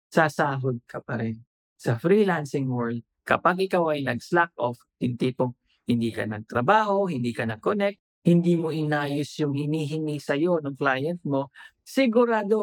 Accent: Filipino